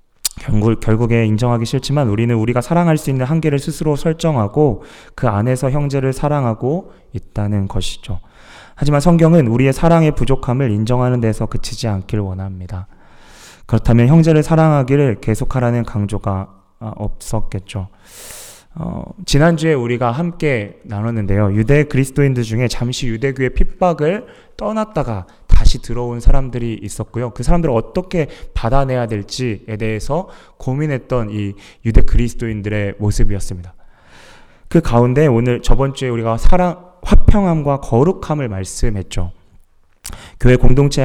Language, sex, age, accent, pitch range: Korean, male, 20-39, native, 105-145 Hz